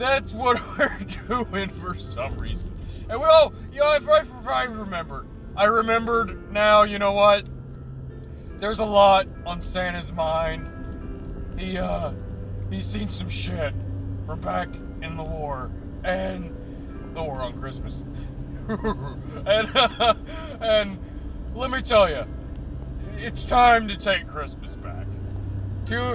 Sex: male